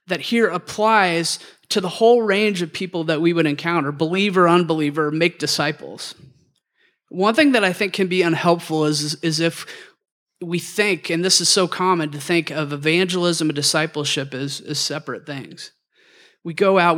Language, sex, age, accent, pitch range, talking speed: English, male, 30-49, American, 150-180 Hz, 170 wpm